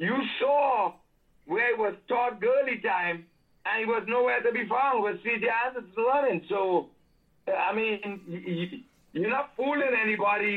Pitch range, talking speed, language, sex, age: 190-235 Hz, 150 wpm, English, male, 60-79